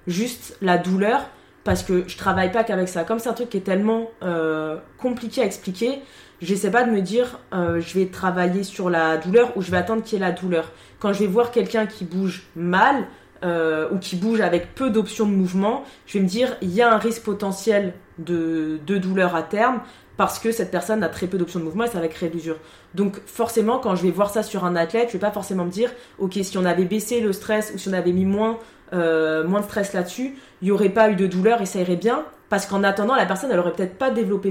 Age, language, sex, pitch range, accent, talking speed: 20-39, French, female, 180-220 Hz, French, 250 wpm